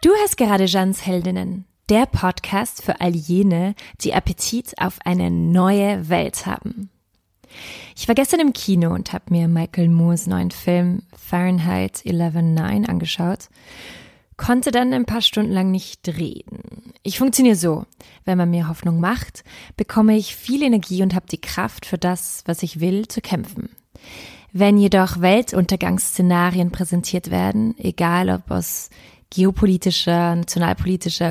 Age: 20-39